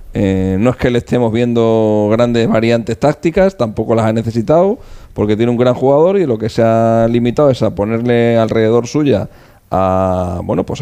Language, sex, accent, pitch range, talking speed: Spanish, male, Spanish, 105-135 Hz, 185 wpm